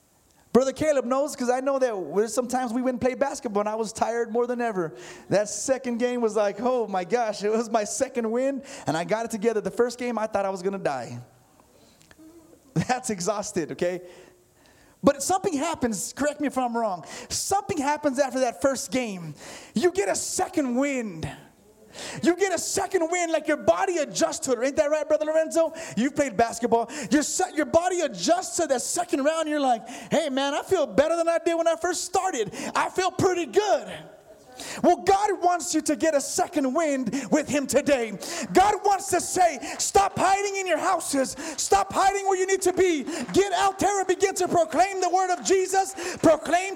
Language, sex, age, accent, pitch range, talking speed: English, male, 30-49, American, 255-355 Hz, 200 wpm